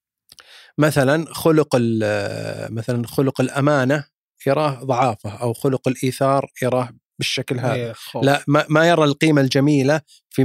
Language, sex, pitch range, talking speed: Arabic, male, 120-145 Hz, 110 wpm